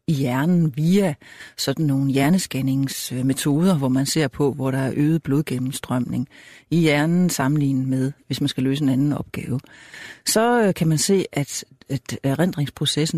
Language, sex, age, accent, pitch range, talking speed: Danish, female, 60-79, native, 135-165 Hz, 155 wpm